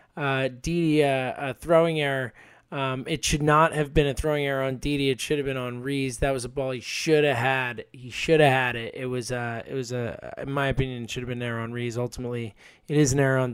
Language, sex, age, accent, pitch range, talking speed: English, male, 20-39, American, 130-150 Hz, 270 wpm